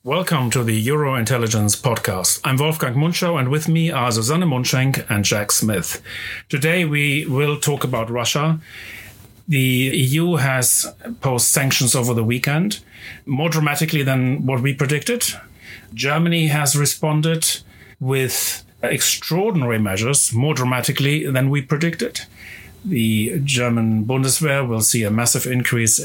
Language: English